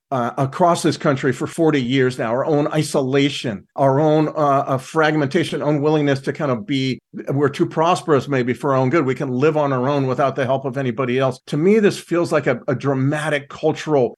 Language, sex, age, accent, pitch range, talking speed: English, male, 50-69, American, 130-155 Hz, 210 wpm